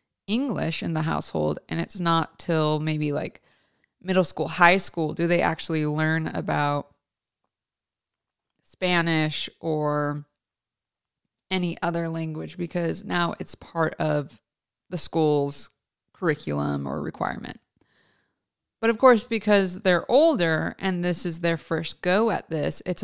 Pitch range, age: 155-185 Hz, 20-39